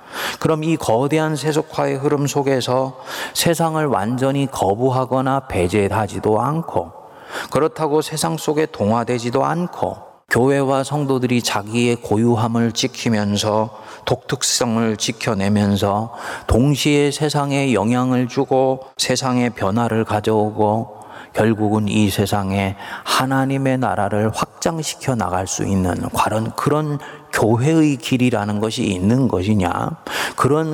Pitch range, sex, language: 105-145 Hz, male, Korean